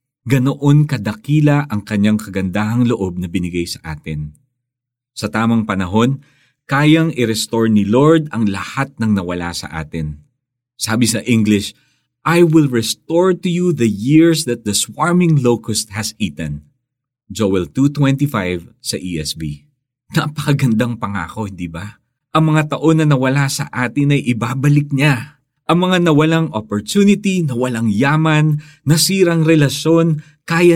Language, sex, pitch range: Filipino, male, 105-145 Hz